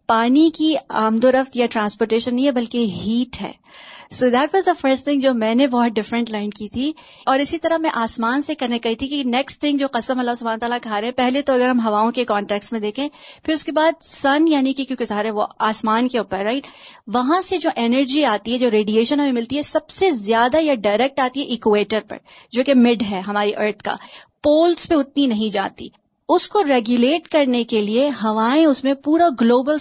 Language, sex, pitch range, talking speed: Urdu, female, 230-290 Hz, 210 wpm